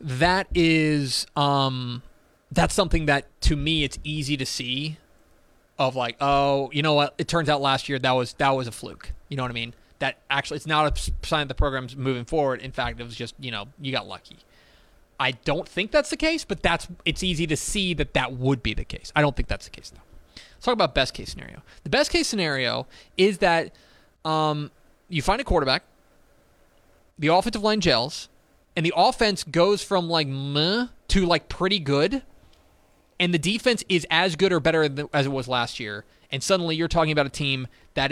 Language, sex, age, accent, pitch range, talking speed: English, male, 20-39, American, 135-180 Hz, 210 wpm